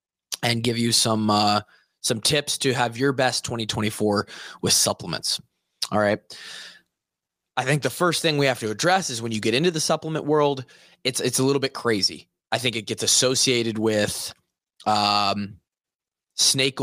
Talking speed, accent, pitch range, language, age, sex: 170 wpm, American, 110-140 Hz, English, 20-39, male